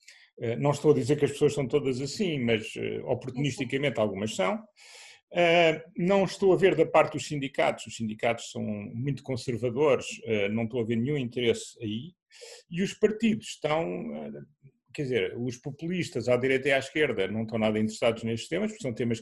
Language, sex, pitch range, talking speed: Portuguese, male, 115-165 Hz, 175 wpm